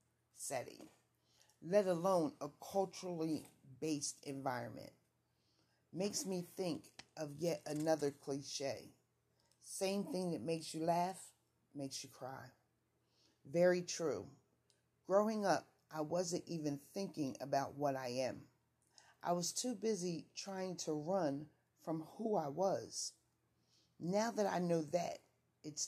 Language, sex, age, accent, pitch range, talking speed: English, female, 40-59, American, 140-185 Hz, 120 wpm